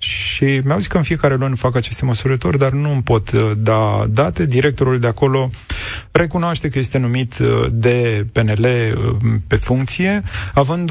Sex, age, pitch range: male, 20-39, 115-145 Hz